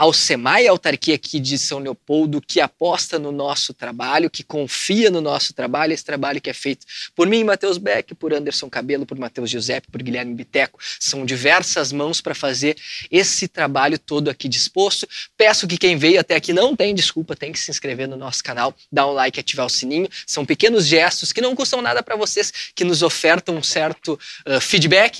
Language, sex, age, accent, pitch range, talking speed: Portuguese, male, 20-39, Brazilian, 135-175 Hz, 200 wpm